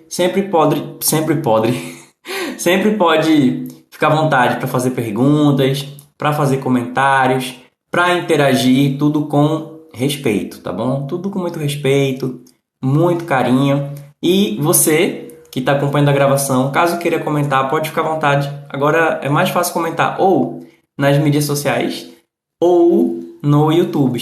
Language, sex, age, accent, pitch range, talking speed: Portuguese, male, 20-39, Brazilian, 130-175 Hz, 135 wpm